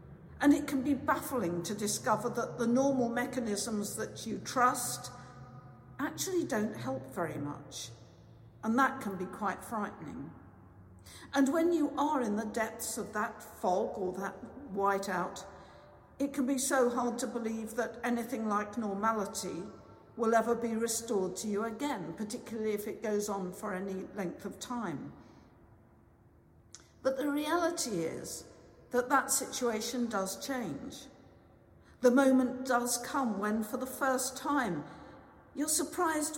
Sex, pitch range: female, 195-260 Hz